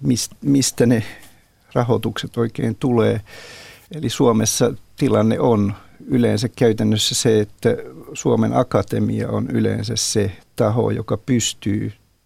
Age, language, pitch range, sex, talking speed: 50-69, Finnish, 110-125 Hz, male, 105 wpm